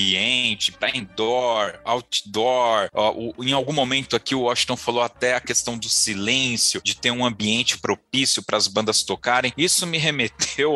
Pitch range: 110-140 Hz